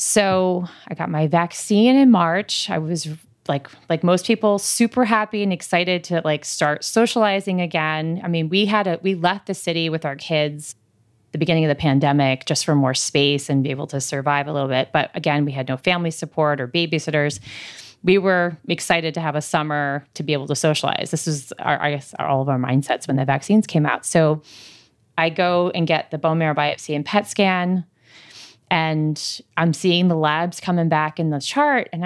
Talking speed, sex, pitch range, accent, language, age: 205 wpm, female, 145-180 Hz, American, English, 30-49